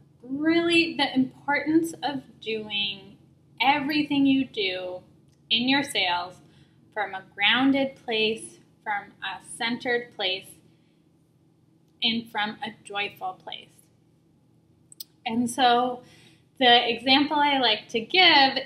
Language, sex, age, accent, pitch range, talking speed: English, female, 10-29, American, 180-260 Hz, 105 wpm